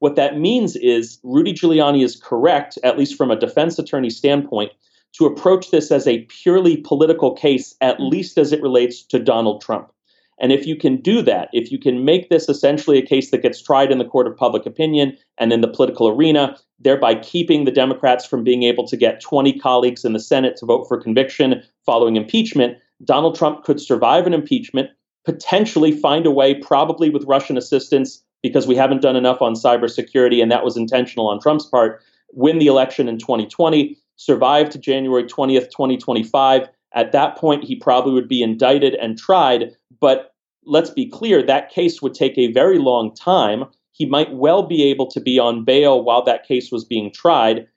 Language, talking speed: English, 195 wpm